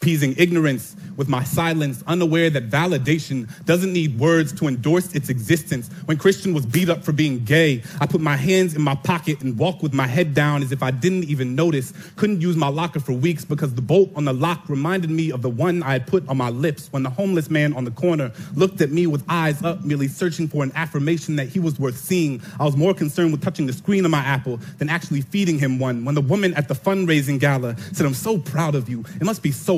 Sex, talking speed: male, 245 wpm